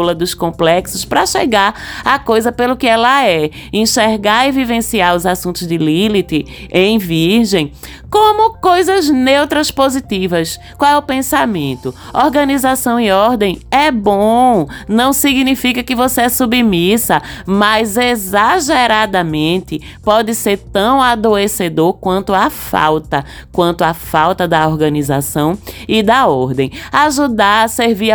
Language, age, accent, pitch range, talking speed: Portuguese, 20-39, Brazilian, 175-245 Hz, 125 wpm